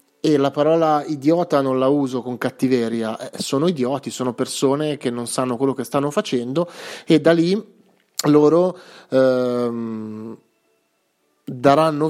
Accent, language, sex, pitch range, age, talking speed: native, Italian, male, 125-155 Hz, 30-49, 130 wpm